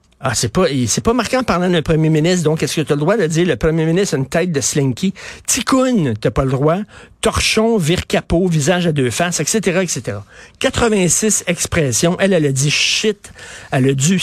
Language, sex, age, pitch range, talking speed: French, male, 50-69, 140-185 Hz, 220 wpm